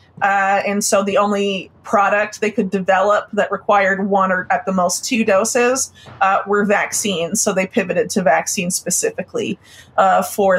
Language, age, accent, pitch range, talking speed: English, 30-49, American, 195-230 Hz, 165 wpm